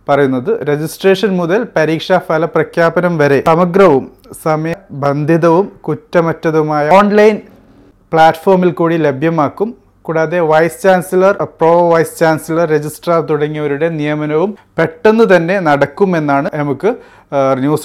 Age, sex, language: 30-49, male, Malayalam